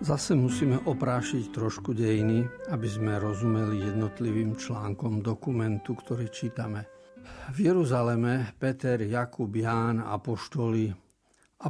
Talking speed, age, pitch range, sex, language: 105 wpm, 50-69, 110-140 Hz, male, Slovak